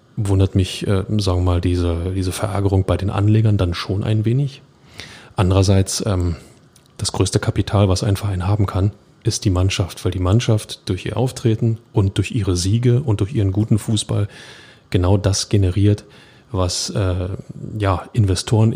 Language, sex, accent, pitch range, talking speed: German, male, German, 95-115 Hz, 165 wpm